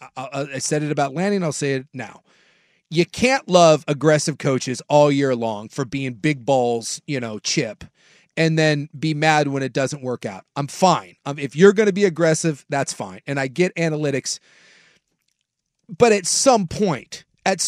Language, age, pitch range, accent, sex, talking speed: English, 30-49, 155-215 Hz, American, male, 175 wpm